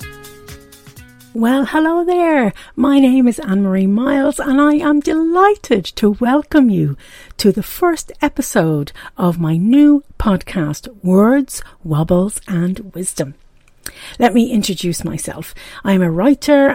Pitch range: 165-240 Hz